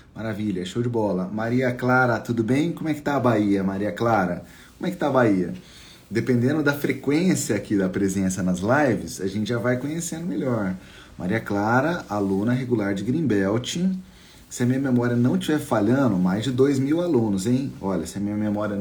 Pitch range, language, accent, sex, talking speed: 100-130 Hz, Portuguese, Brazilian, male, 190 wpm